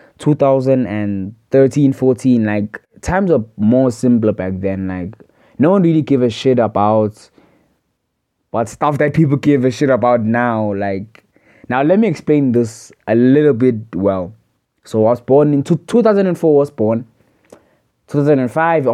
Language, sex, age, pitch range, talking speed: English, male, 20-39, 110-150 Hz, 150 wpm